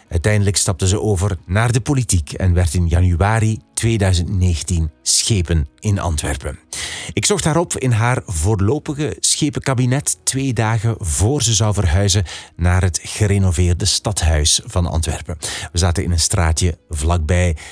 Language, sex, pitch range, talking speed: Dutch, male, 85-120 Hz, 140 wpm